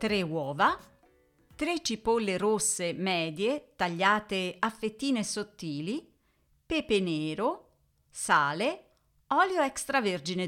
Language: Italian